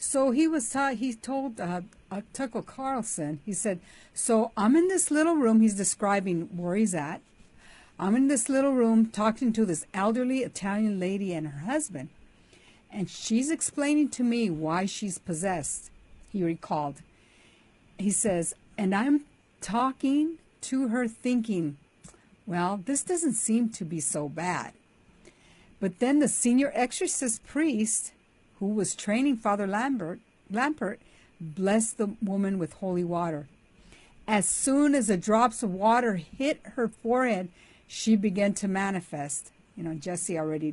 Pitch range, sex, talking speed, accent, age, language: 180-250 Hz, female, 145 wpm, American, 60-79, English